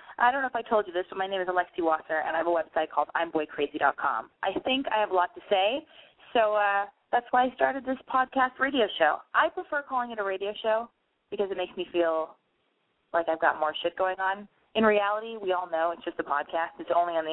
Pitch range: 175-250 Hz